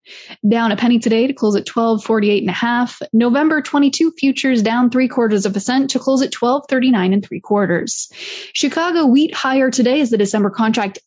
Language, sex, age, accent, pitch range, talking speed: English, female, 20-39, American, 220-265 Hz, 190 wpm